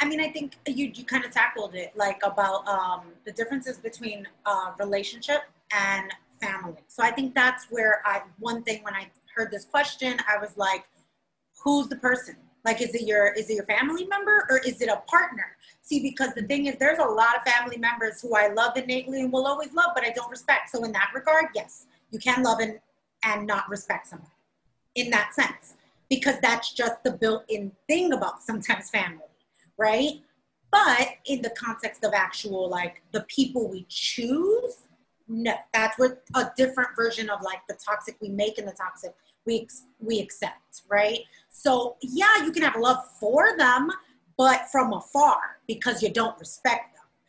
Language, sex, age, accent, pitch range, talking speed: English, female, 30-49, American, 210-275 Hz, 190 wpm